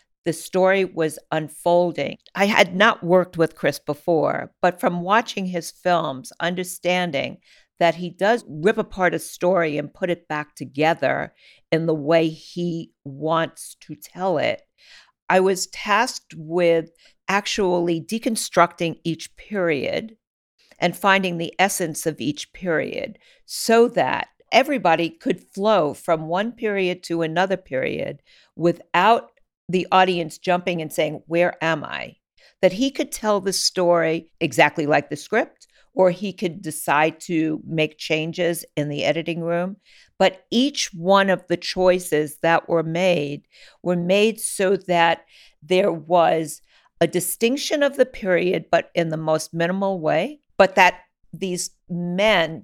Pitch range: 165-195 Hz